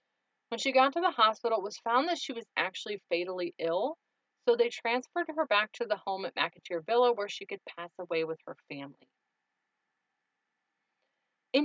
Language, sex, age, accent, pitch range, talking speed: English, female, 30-49, American, 175-265 Hz, 180 wpm